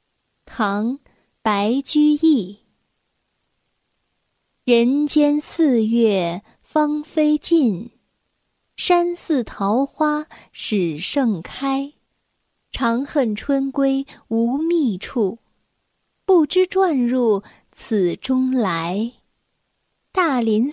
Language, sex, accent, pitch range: Chinese, female, native, 220-300 Hz